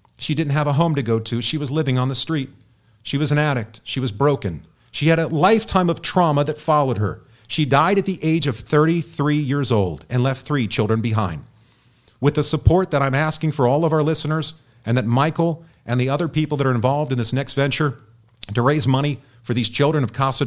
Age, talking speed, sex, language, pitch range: 40-59, 225 wpm, male, English, 120-155 Hz